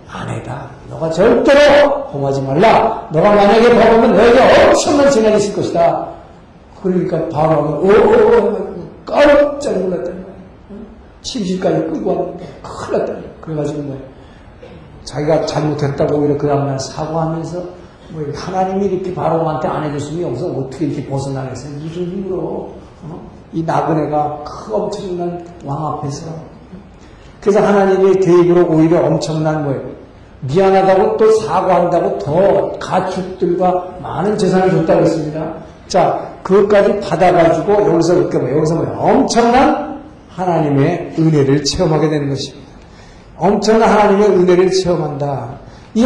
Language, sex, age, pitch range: Korean, male, 60-79, 150-200 Hz